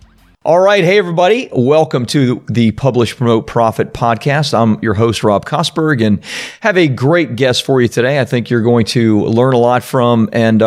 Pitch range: 115-145 Hz